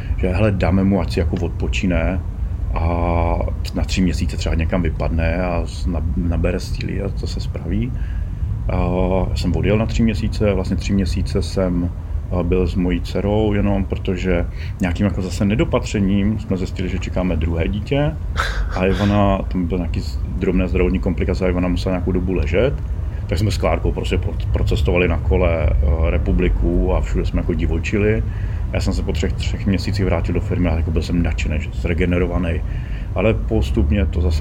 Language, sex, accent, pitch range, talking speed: Czech, male, native, 85-95 Hz, 165 wpm